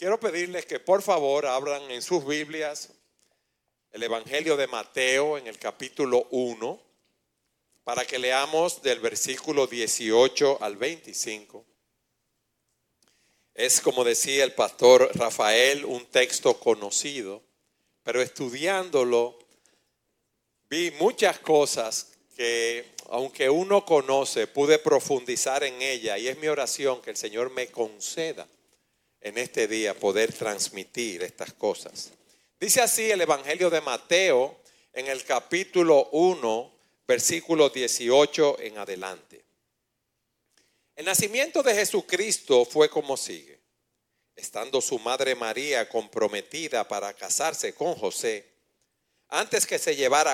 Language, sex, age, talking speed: Spanish, male, 50-69, 115 wpm